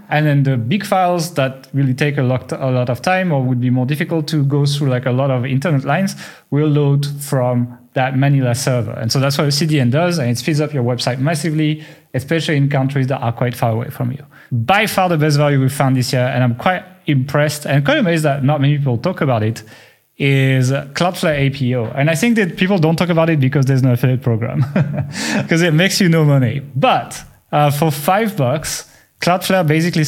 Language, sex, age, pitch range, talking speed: English, male, 30-49, 130-160 Hz, 220 wpm